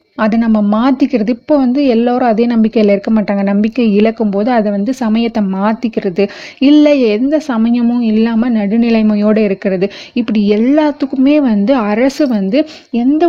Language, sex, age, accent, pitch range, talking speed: Tamil, female, 30-49, native, 200-260 Hz, 130 wpm